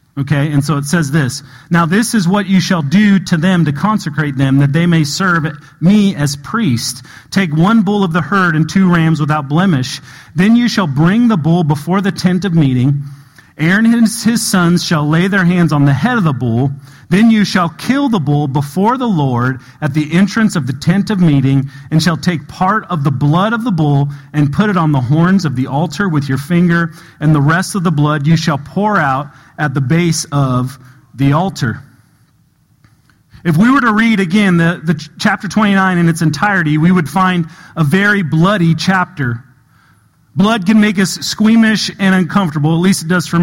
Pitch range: 145-195 Hz